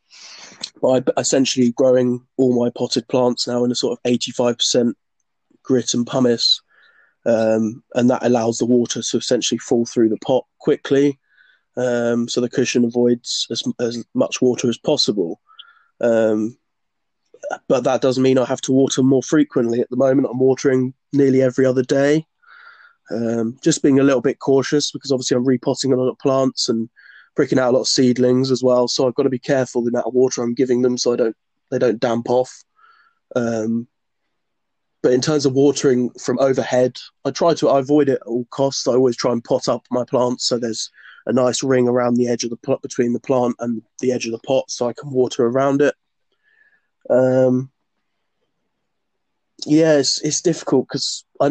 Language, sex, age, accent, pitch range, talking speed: English, male, 20-39, British, 120-140 Hz, 190 wpm